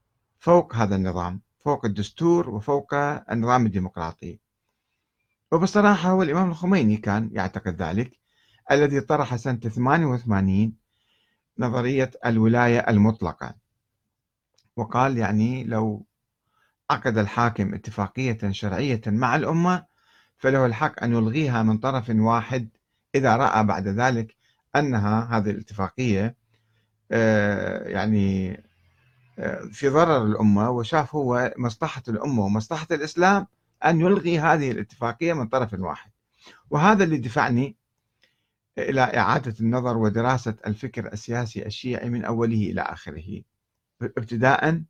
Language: Arabic